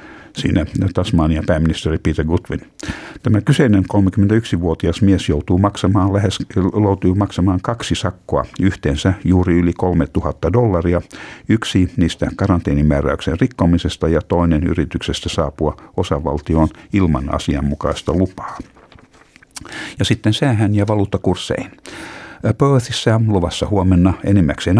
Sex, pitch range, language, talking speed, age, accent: male, 80-100 Hz, Finnish, 100 wpm, 60-79, native